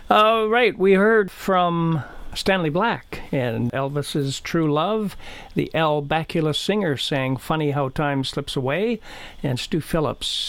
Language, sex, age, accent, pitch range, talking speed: English, male, 50-69, American, 130-175 Hz, 145 wpm